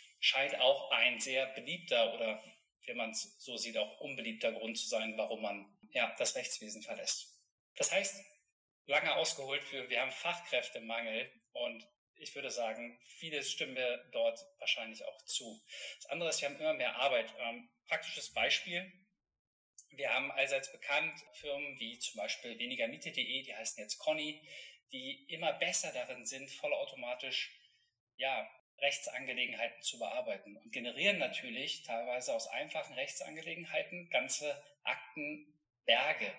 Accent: German